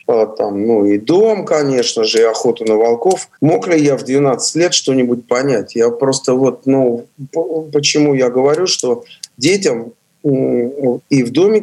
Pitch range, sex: 120-155 Hz, male